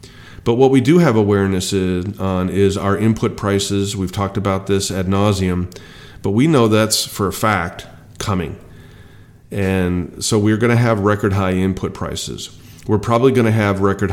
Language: English